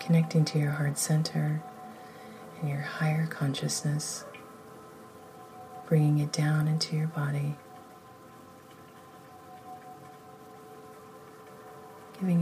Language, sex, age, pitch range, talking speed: English, female, 30-49, 150-245 Hz, 75 wpm